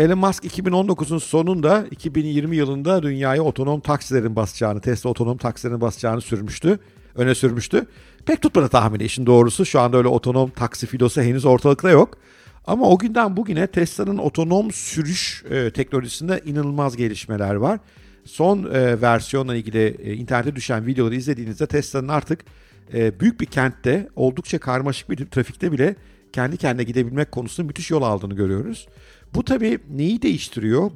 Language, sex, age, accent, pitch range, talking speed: Turkish, male, 50-69, native, 115-165 Hz, 145 wpm